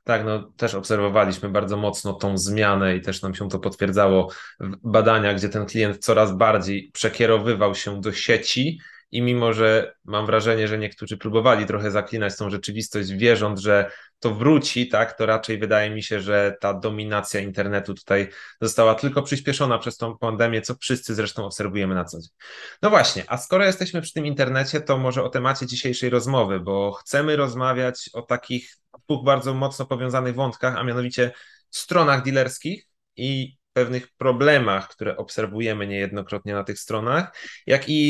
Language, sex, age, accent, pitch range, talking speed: Polish, male, 20-39, native, 100-130 Hz, 165 wpm